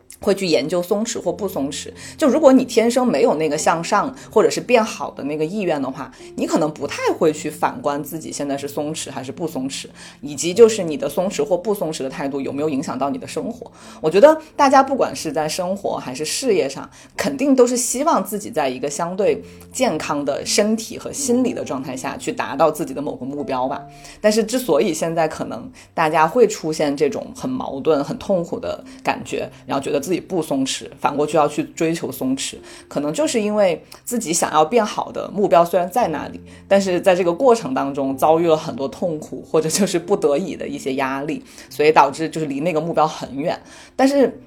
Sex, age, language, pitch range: female, 30-49, Chinese, 150-250 Hz